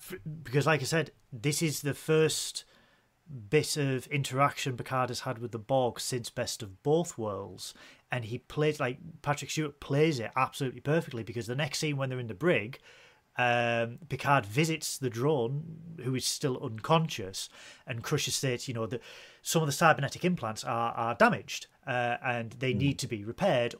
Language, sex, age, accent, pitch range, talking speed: English, male, 30-49, British, 120-155 Hz, 180 wpm